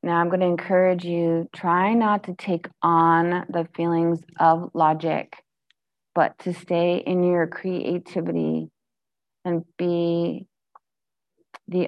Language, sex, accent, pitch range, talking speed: English, female, American, 165-180 Hz, 115 wpm